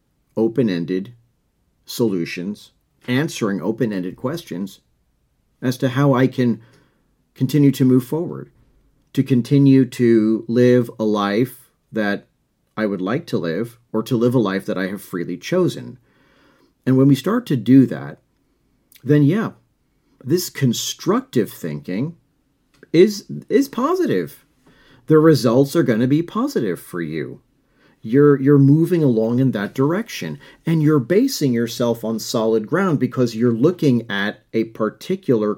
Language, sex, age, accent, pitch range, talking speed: English, male, 40-59, American, 110-140 Hz, 135 wpm